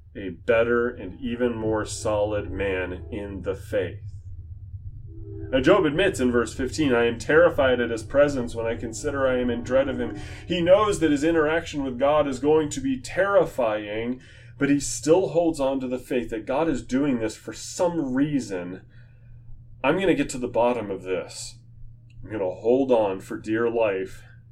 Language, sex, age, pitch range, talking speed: English, male, 30-49, 95-130 Hz, 185 wpm